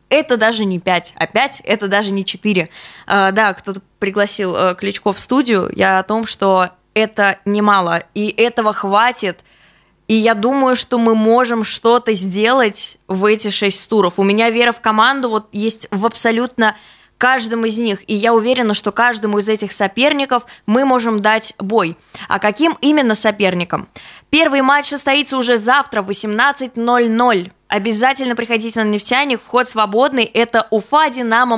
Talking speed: 160 wpm